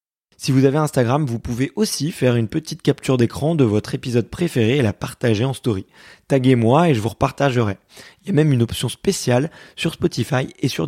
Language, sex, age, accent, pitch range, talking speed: French, male, 20-39, French, 115-150 Hz, 205 wpm